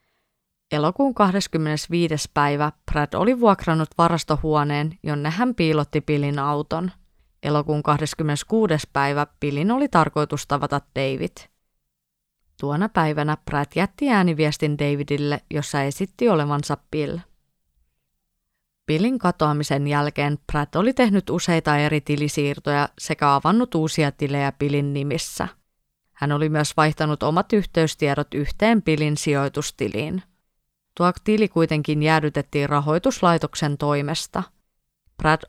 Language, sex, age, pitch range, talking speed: Finnish, female, 30-49, 145-170 Hz, 105 wpm